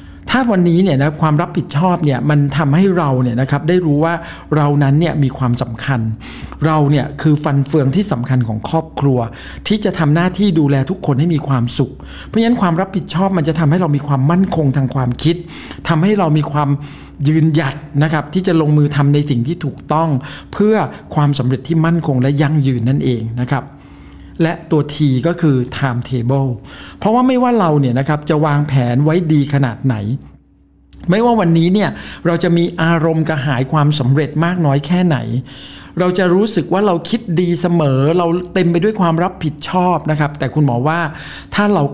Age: 60-79